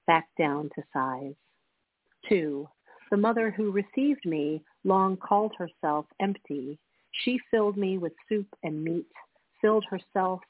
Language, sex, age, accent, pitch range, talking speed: English, female, 40-59, American, 160-200 Hz, 130 wpm